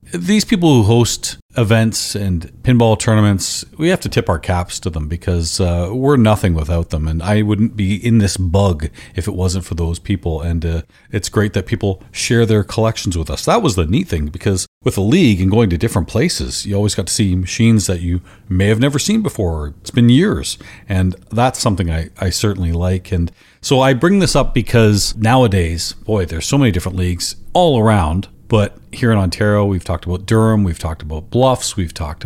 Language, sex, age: English, male, 40-59